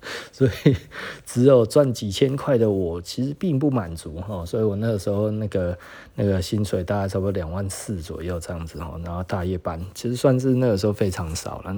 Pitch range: 95-120 Hz